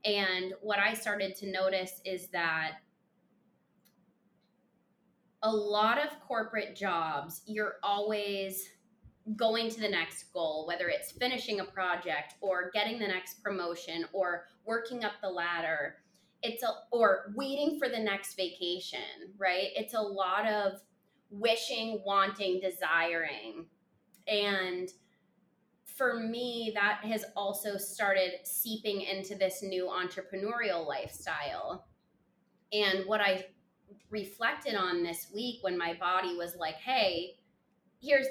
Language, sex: English, female